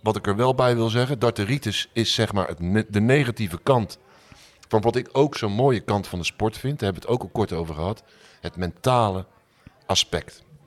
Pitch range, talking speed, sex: 95-120 Hz, 220 wpm, male